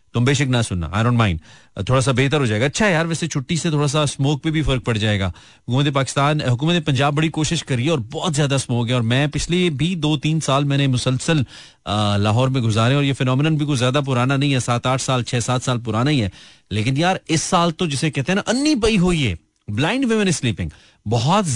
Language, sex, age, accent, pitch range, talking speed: Hindi, male, 30-49, native, 115-145 Hz, 225 wpm